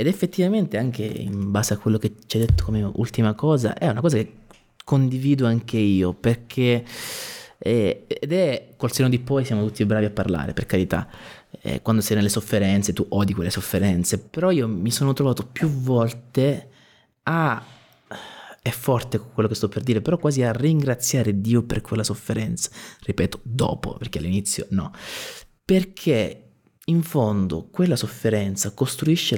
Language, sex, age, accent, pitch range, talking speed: Italian, male, 20-39, native, 110-140 Hz, 160 wpm